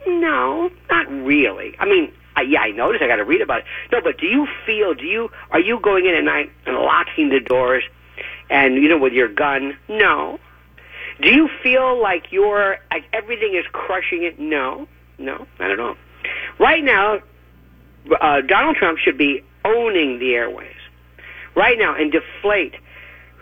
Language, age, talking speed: English, 50-69, 175 wpm